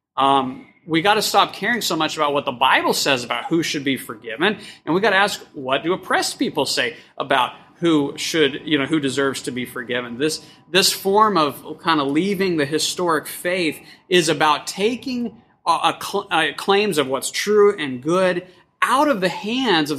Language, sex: English, male